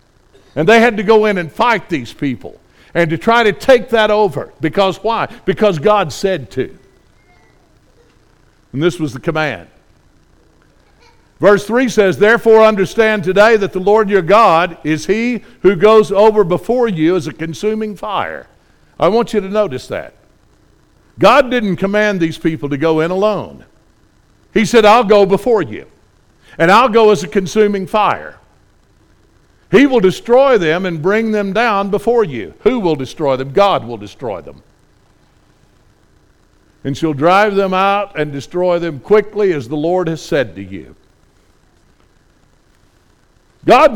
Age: 60-79